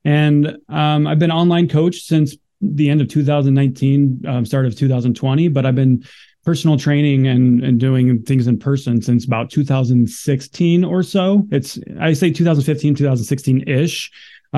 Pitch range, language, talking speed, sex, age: 120-145 Hz, English, 150 wpm, male, 30-49